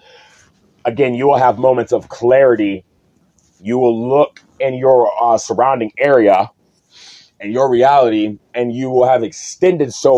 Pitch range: 120-155 Hz